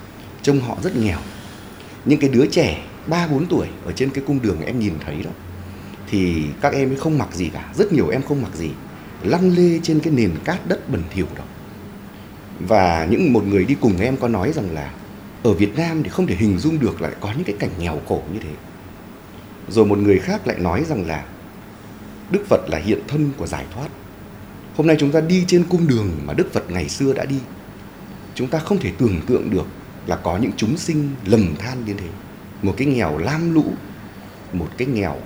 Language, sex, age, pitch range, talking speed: Vietnamese, male, 30-49, 95-140 Hz, 215 wpm